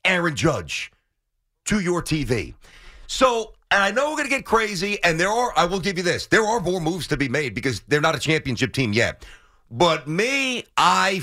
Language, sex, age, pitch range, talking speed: English, male, 40-59, 155-220 Hz, 210 wpm